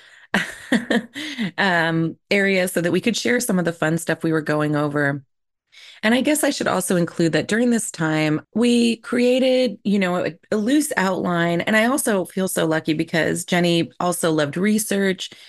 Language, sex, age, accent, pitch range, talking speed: English, female, 30-49, American, 165-220 Hz, 180 wpm